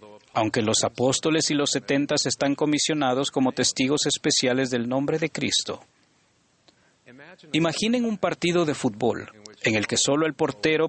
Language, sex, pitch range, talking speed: Spanish, male, 115-150 Hz, 145 wpm